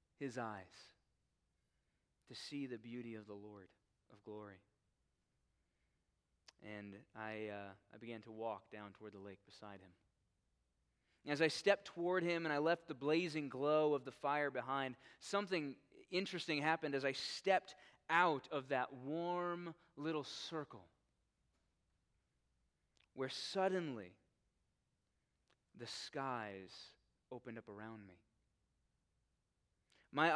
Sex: male